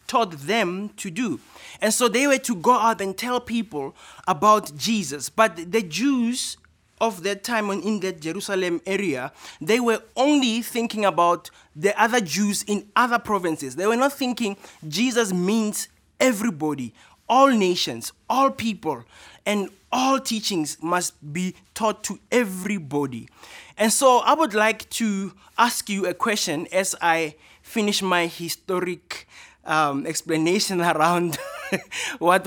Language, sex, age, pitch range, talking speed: English, male, 20-39, 155-220 Hz, 140 wpm